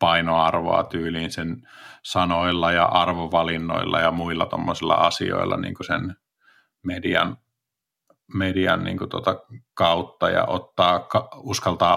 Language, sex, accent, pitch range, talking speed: Finnish, male, native, 85-100 Hz, 100 wpm